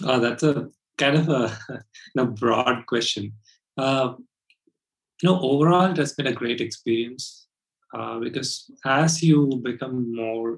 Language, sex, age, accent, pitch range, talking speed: English, male, 30-49, Indian, 115-135 Hz, 140 wpm